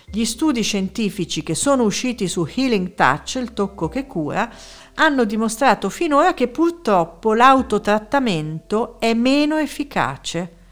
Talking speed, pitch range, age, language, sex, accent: 125 wpm, 155-225 Hz, 50-69, Italian, female, native